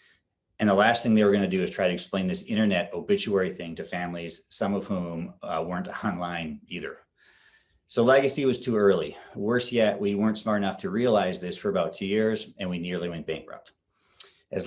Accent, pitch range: American, 90-110 Hz